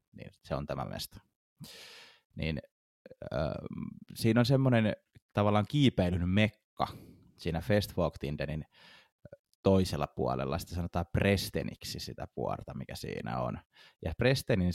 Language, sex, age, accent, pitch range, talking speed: Finnish, male, 20-39, native, 85-125 Hz, 110 wpm